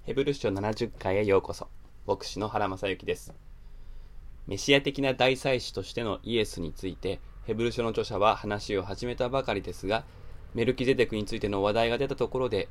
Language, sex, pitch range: Japanese, male, 100-130 Hz